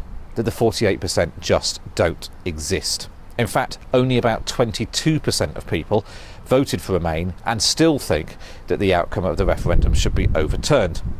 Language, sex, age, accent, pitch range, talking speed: English, male, 40-59, British, 90-120 Hz, 150 wpm